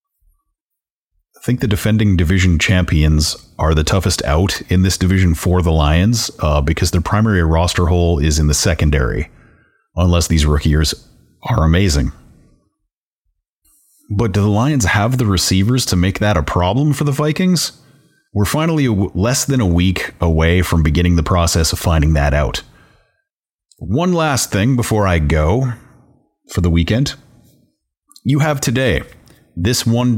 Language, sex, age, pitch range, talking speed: English, male, 30-49, 80-115 Hz, 150 wpm